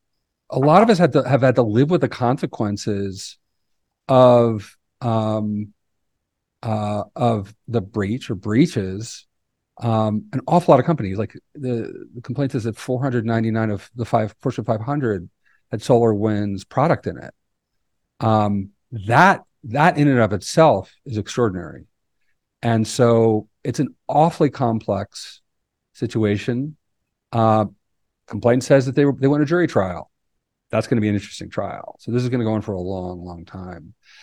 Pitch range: 100-125 Hz